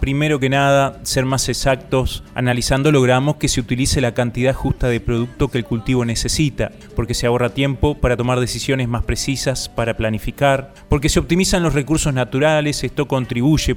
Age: 20-39